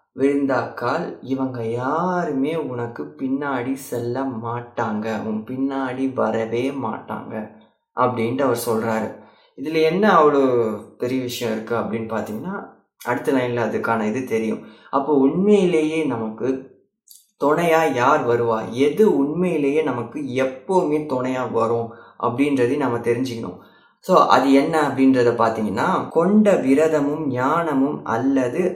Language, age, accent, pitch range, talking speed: Tamil, 20-39, native, 115-145 Hz, 105 wpm